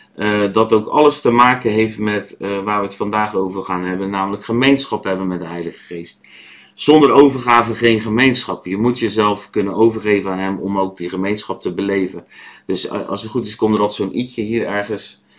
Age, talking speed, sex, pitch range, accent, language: 30-49, 205 wpm, male, 95-120 Hz, Dutch, Dutch